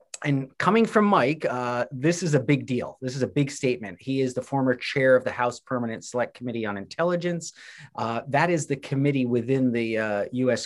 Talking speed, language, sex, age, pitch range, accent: 210 wpm, English, male, 30-49, 115-150 Hz, American